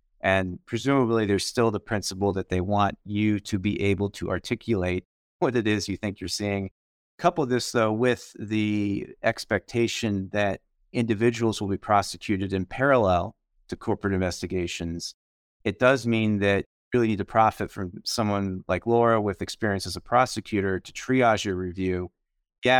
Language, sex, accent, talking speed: English, male, American, 165 wpm